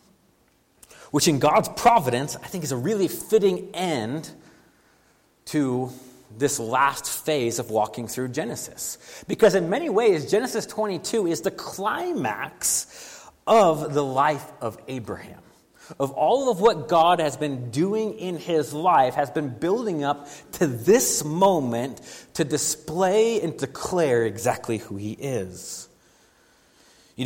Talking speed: 130 wpm